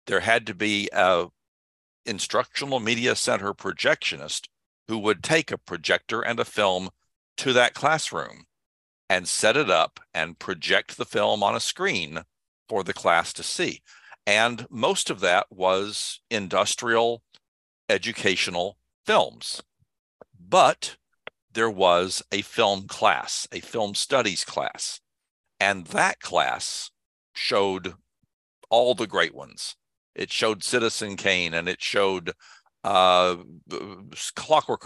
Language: English